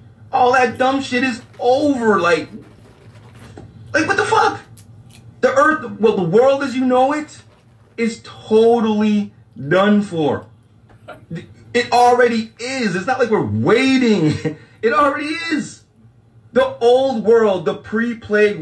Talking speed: 130 wpm